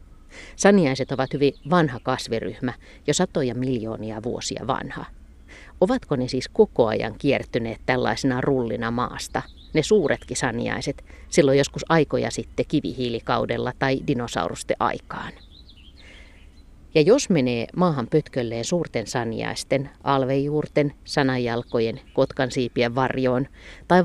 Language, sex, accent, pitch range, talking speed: Finnish, female, native, 115-150 Hz, 105 wpm